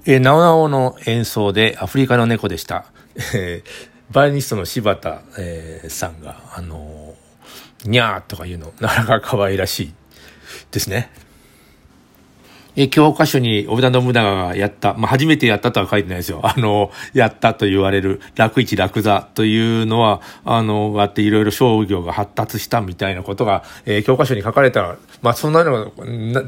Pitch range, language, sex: 100-130 Hz, Japanese, male